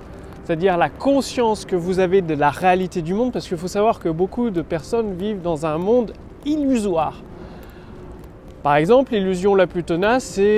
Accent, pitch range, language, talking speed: French, 160-230 Hz, French, 175 wpm